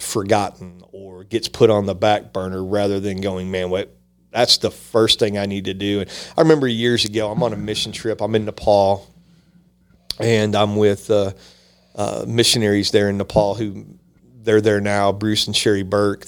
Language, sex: English, male